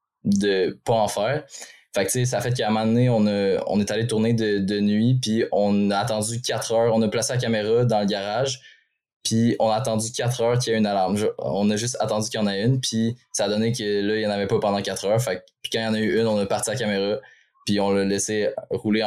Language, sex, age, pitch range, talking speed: French, male, 20-39, 100-115 Hz, 285 wpm